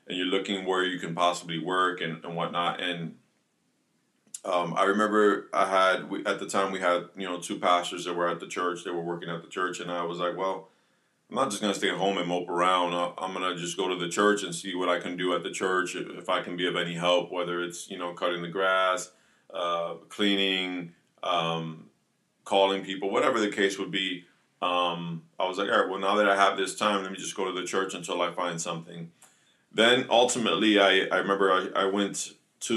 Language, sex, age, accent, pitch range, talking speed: English, male, 30-49, American, 85-100 Hz, 235 wpm